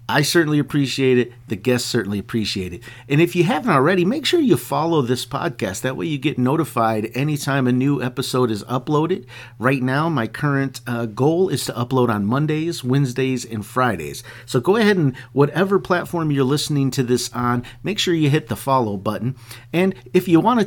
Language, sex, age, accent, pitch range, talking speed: English, male, 50-69, American, 120-150 Hz, 195 wpm